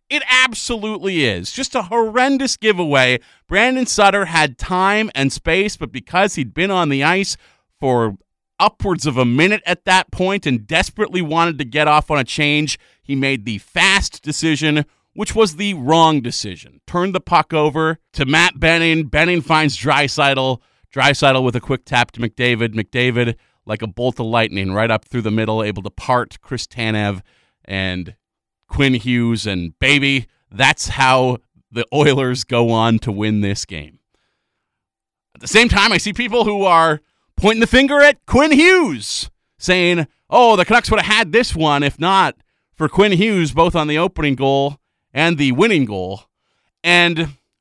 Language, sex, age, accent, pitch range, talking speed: English, male, 40-59, American, 120-195 Hz, 170 wpm